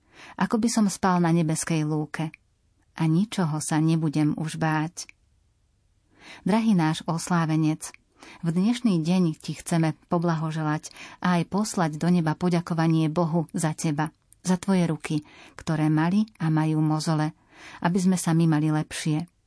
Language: Slovak